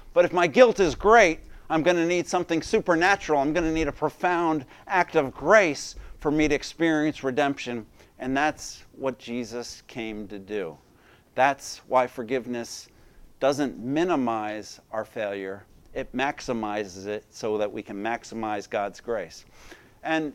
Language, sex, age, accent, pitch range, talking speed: English, male, 50-69, American, 120-160 Hz, 150 wpm